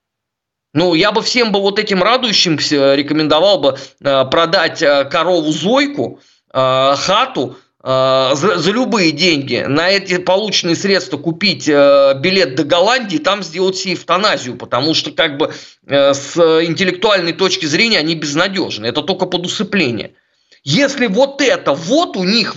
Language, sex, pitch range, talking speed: Russian, male, 135-185 Hz, 125 wpm